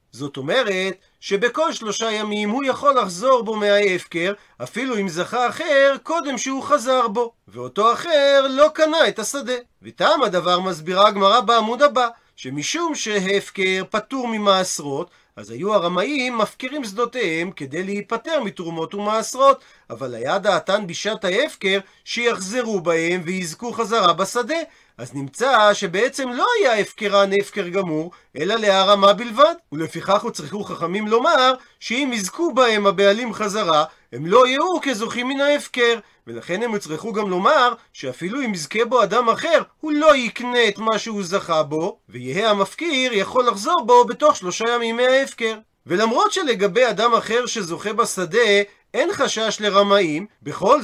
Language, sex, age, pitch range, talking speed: Hebrew, male, 40-59, 195-250 Hz, 140 wpm